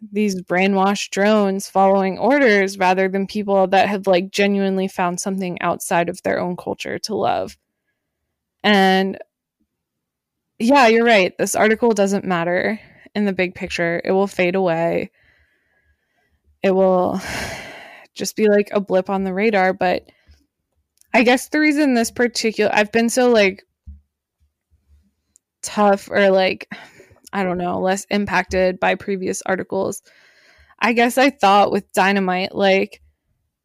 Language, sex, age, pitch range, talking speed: English, female, 20-39, 185-215 Hz, 135 wpm